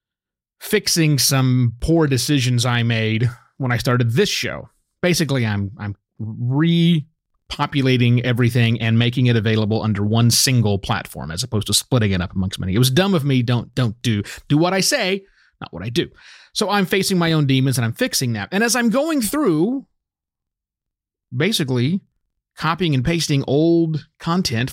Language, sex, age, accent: English, male, 30-49, American